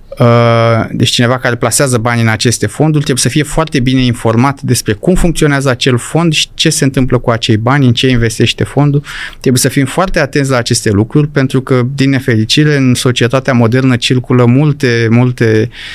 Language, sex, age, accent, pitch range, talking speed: Romanian, male, 30-49, native, 115-140 Hz, 180 wpm